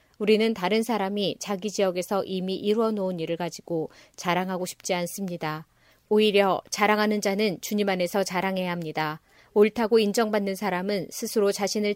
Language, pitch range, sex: Korean, 180-215 Hz, female